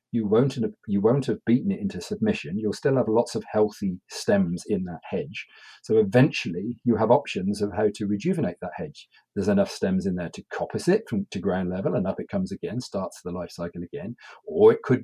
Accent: British